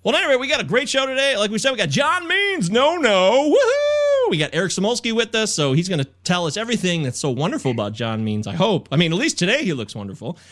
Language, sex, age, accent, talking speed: English, male, 30-49, American, 270 wpm